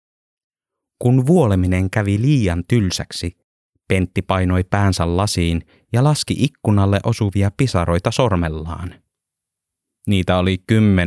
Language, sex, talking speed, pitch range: Finnish, male, 100 wpm, 85-105 Hz